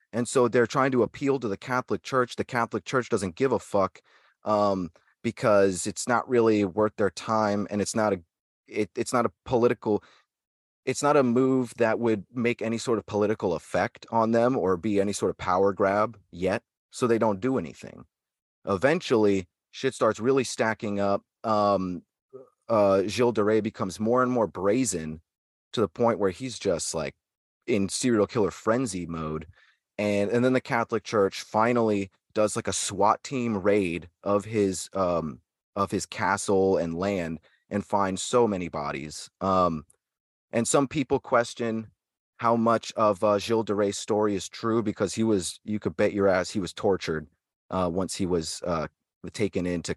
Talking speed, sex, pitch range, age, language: 175 wpm, male, 95-115 Hz, 30-49, English